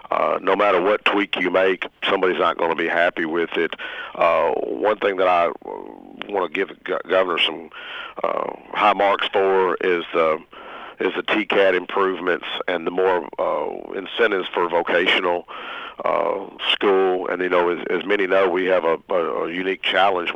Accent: American